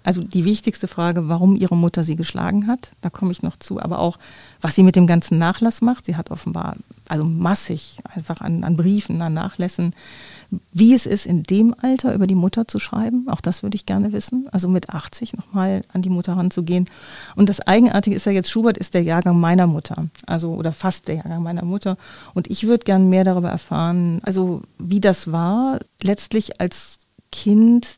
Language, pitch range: German, 175-205 Hz